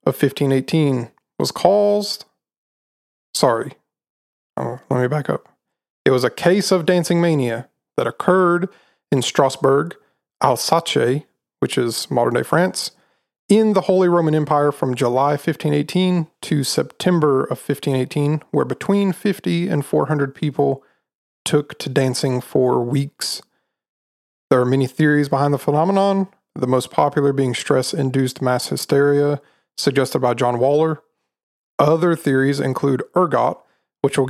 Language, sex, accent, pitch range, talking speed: English, male, American, 130-160 Hz, 130 wpm